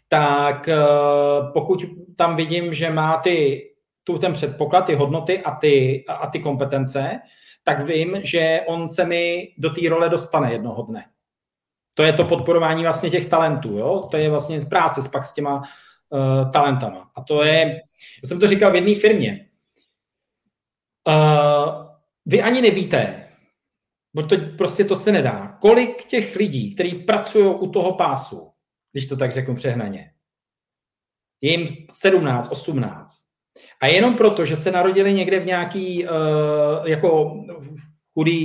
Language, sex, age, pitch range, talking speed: Czech, male, 40-59, 145-185 Hz, 150 wpm